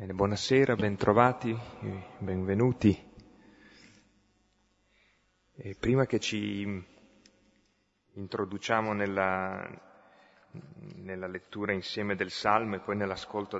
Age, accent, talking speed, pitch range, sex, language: 30-49, native, 75 wpm, 90-110 Hz, male, Italian